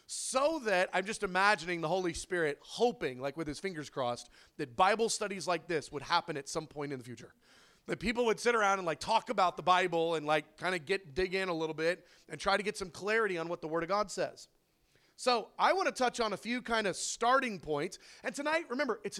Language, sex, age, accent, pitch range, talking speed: English, male, 30-49, American, 165-230 Hz, 240 wpm